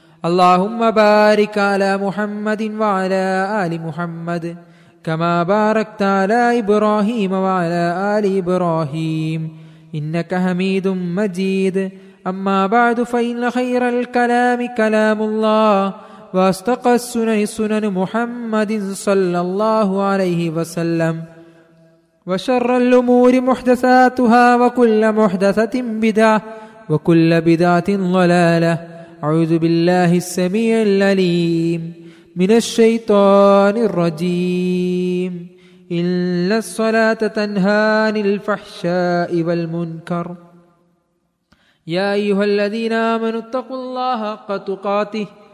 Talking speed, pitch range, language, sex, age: 60 wpm, 170-215 Hz, Malayalam, male, 20-39